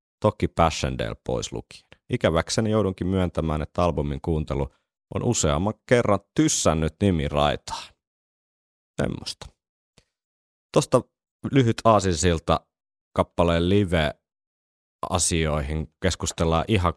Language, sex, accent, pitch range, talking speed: Finnish, male, native, 75-95 Hz, 85 wpm